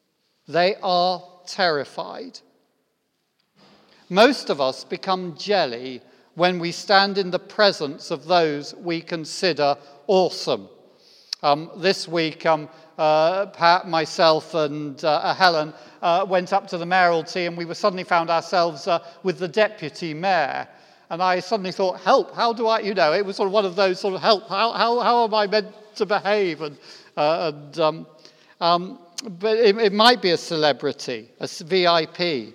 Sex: male